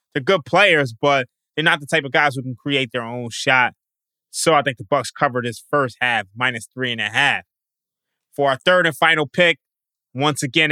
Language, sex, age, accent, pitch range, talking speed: English, male, 20-39, American, 135-165 Hz, 215 wpm